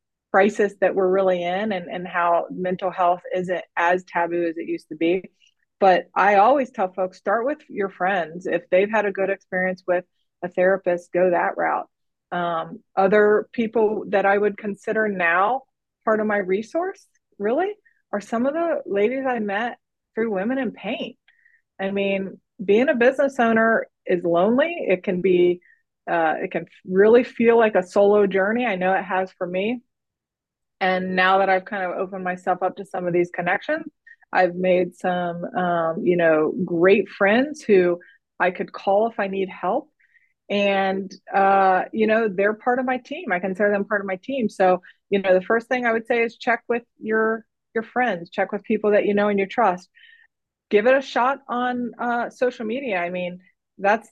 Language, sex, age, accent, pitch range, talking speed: English, female, 30-49, American, 185-230 Hz, 190 wpm